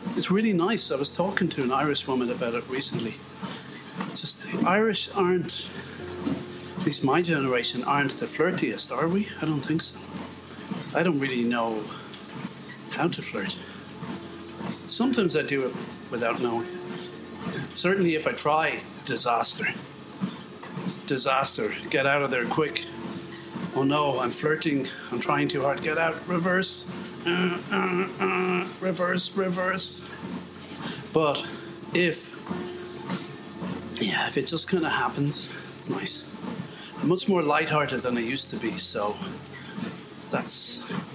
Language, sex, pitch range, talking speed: English, male, 140-185 Hz, 135 wpm